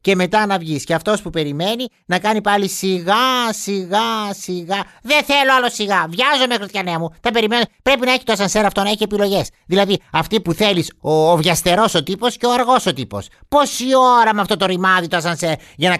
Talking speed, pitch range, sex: 210 wpm, 145-210 Hz, male